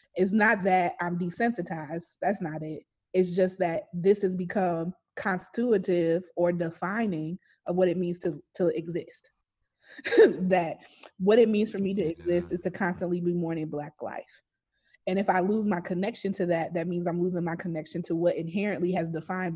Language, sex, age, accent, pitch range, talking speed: English, female, 20-39, American, 170-195 Hz, 180 wpm